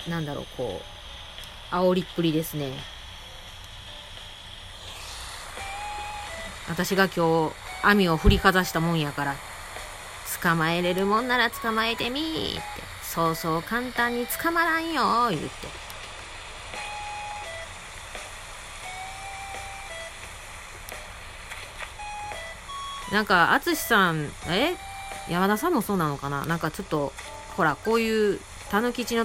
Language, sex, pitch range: Japanese, female, 140-220 Hz